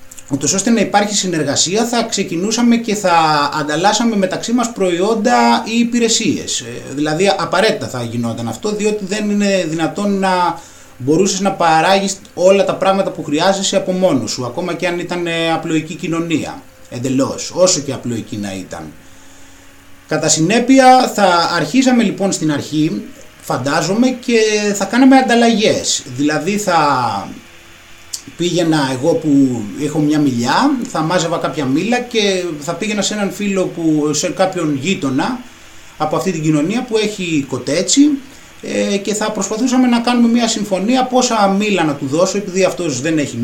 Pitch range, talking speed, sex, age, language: 150-220 Hz, 145 wpm, male, 30-49, Greek